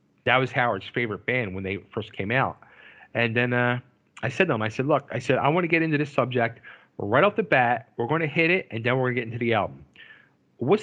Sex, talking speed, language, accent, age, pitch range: male, 265 wpm, English, American, 40-59, 120-155 Hz